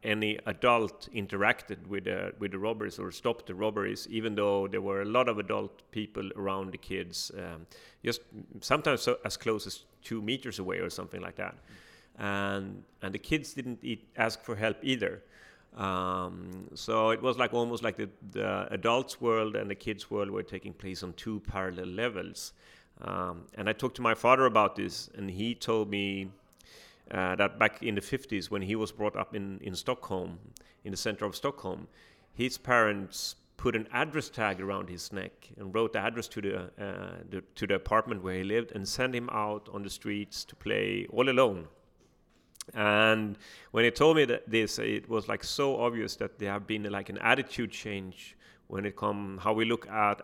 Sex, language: male, English